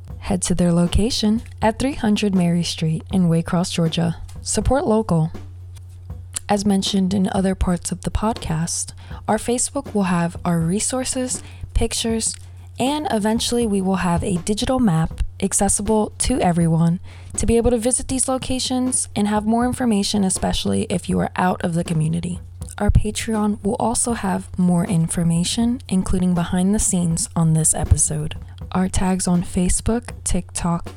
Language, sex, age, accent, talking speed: English, female, 20-39, American, 150 wpm